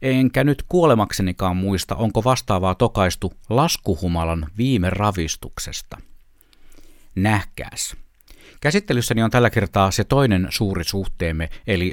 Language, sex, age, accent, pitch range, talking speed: Finnish, male, 60-79, native, 95-130 Hz, 100 wpm